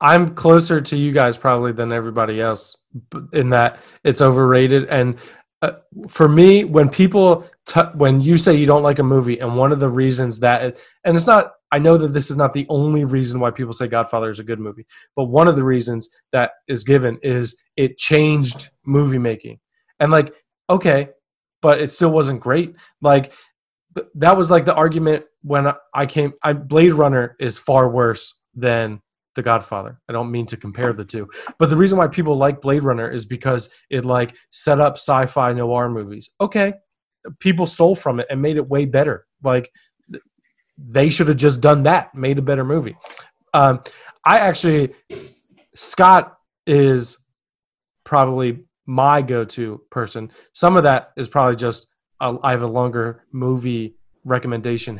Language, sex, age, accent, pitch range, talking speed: English, male, 20-39, American, 120-150 Hz, 175 wpm